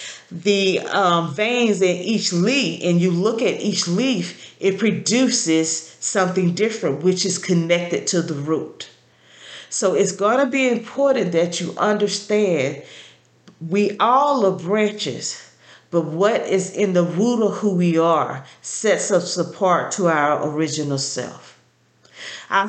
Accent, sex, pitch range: American, female, 175-215 Hz